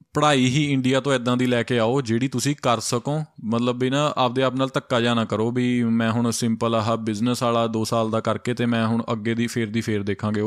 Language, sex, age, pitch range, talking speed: Punjabi, male, 20-39, 110-125 Hz, 245 wpm